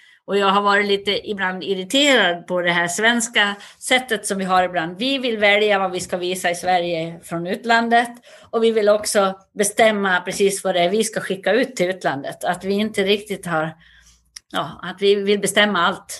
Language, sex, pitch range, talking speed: Swedish, female, 175-215 Hz, 195 wpm